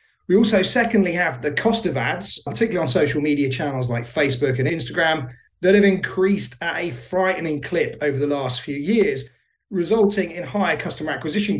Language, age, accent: English, 40-59, British